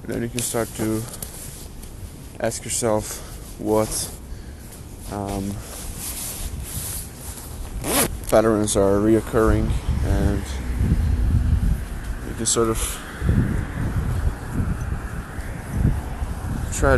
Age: 20-39